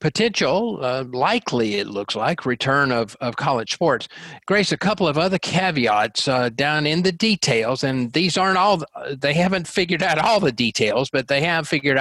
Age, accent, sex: 50-69, American, male